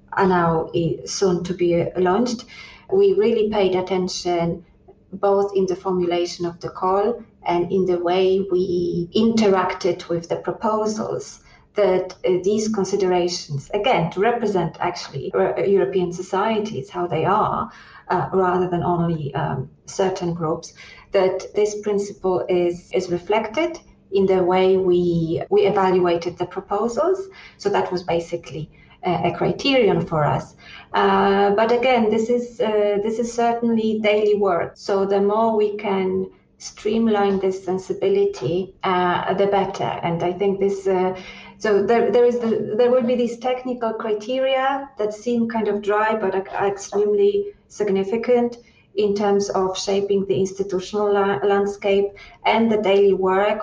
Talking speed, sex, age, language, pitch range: 140 wpm, female, 30-49, English, 180-220 Hz